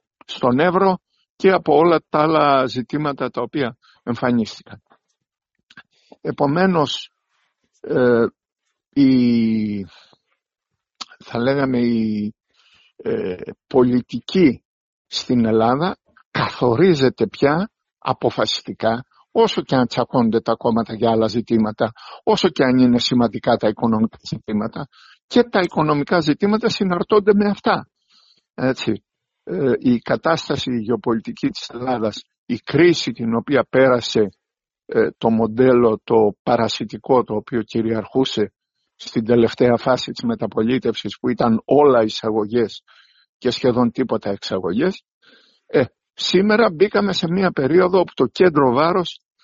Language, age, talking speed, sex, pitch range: Greek, 60-79, 110 wpm, male, 115-175 Hz